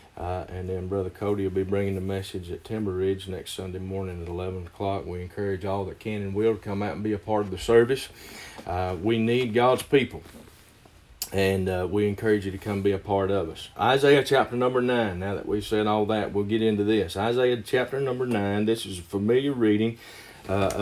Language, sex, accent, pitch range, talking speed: English, male, American, 95-115 Hz, 220 wpm